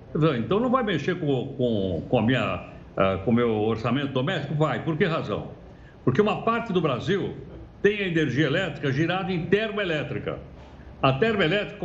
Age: 60-79